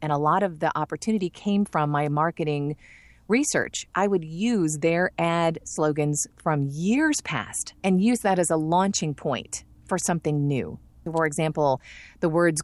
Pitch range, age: 150-190 Hz, 40-59